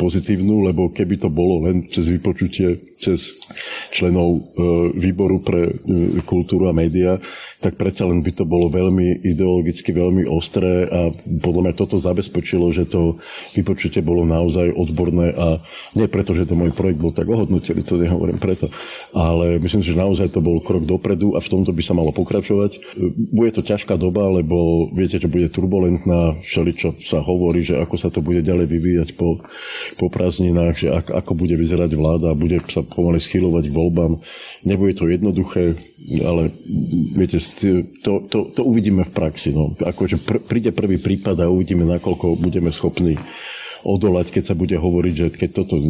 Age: 50-69